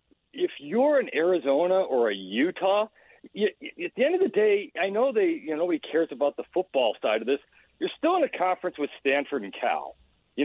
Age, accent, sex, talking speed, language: 50-69, American, male, 210 wpm, English